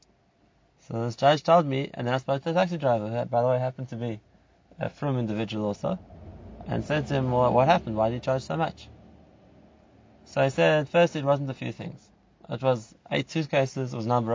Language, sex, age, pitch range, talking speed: English, male, 20-39, 120-150 Hz, 230 wpm